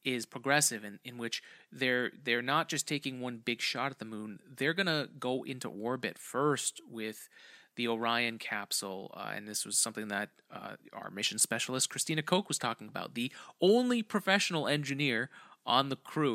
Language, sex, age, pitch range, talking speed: English, male, 30-49, 115-145 Hz, 180 wpm